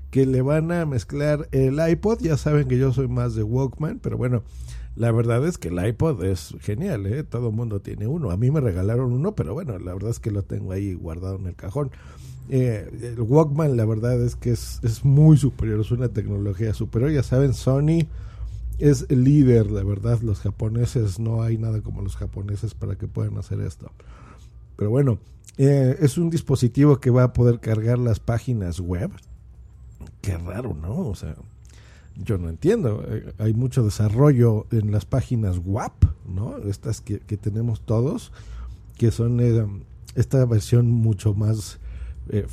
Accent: Mexican